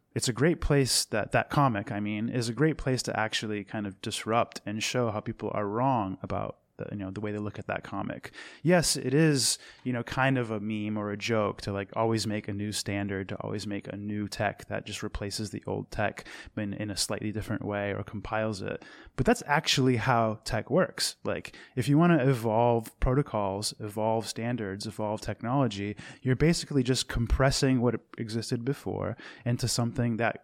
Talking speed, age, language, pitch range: 200 wpm, 20-39, English, 105-125 Hz